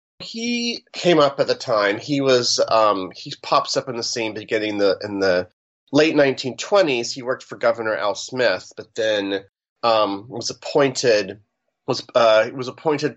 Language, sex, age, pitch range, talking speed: English, male, 30-49, 110-135 Hz, 170 wpm